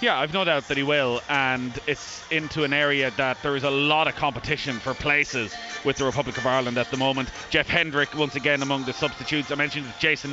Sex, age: male, 30-49